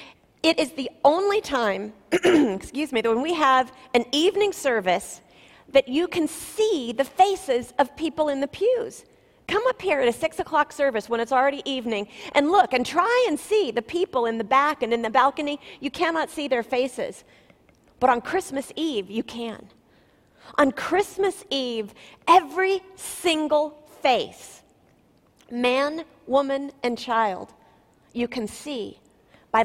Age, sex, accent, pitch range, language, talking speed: 40-59, female, American, 250-340 Hz, English, 155 wpm